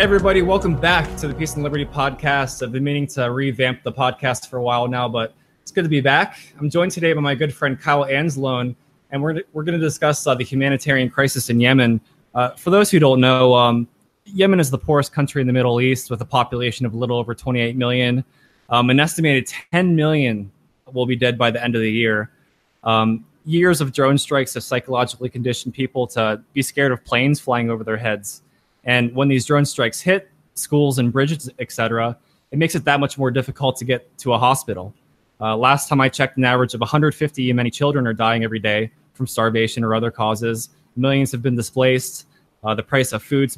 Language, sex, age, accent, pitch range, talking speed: English, male, 20-39, American, 120-150 Hz, 215 wpm